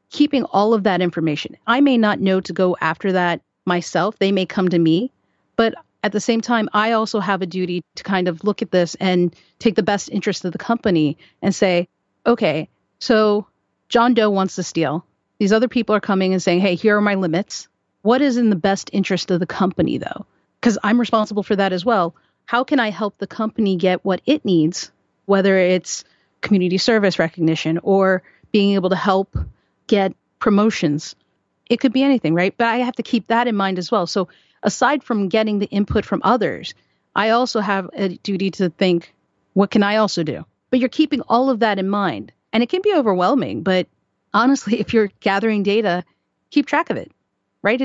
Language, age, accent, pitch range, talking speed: English, 40-59, American, 185-230 Hz, 205 wpm